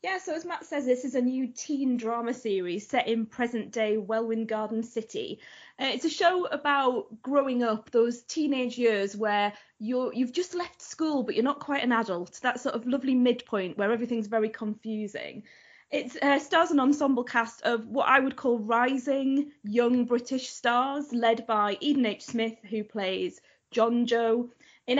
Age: 20-39